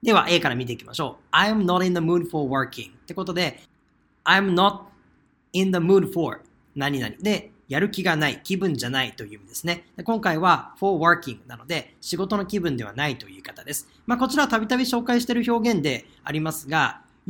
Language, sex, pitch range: Japanese, male, 145-215 Hz